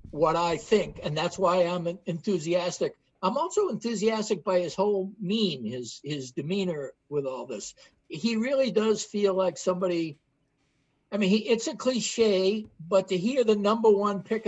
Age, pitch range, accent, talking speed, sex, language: 60-79, 155-215 Hz, American, 165 wpm, male, English